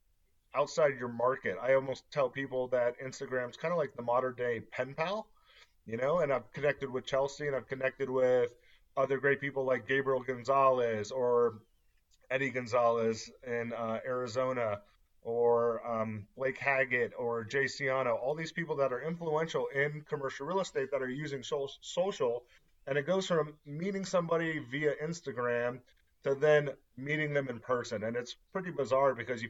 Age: 30-49